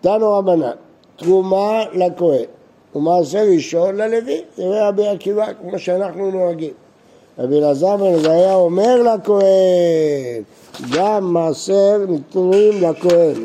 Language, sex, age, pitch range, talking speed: Hebrew, male, 60-79, 150-205 Hz, 105 wpm